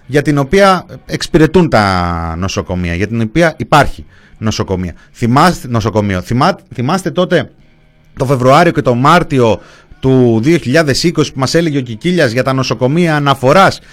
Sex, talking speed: male, 140 wpm